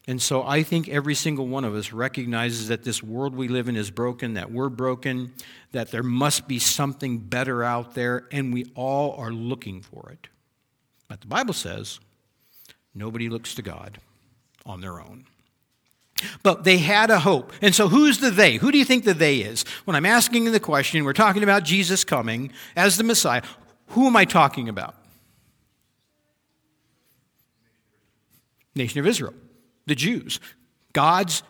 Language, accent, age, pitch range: English, American, 50-69, 120-195 Hz